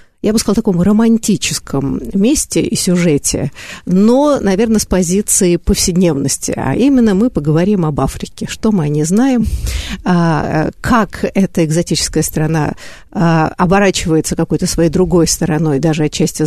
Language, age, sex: Russian, 50-69, female